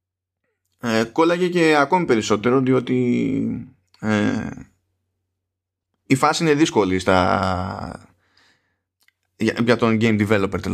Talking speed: 95 wpm